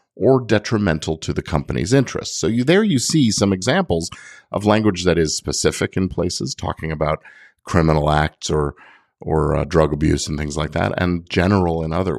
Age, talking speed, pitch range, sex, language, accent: 50-69, 180 wpm, 80-105 Hz, male, English, American